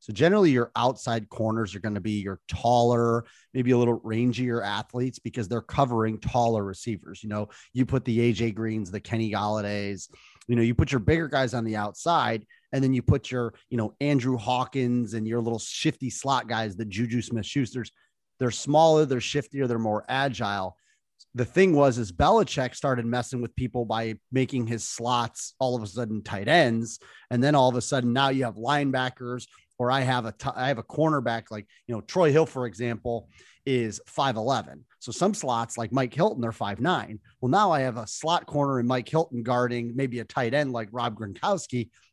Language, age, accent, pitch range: English, 30-49, American, 110-130 Hz